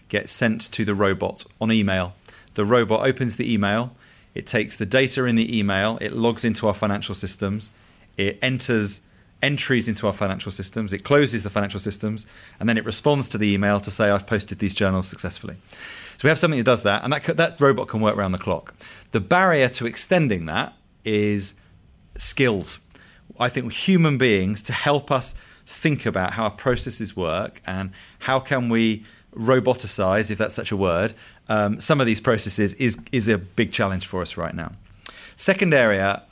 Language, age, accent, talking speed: English, 30-49, British, 190 wpm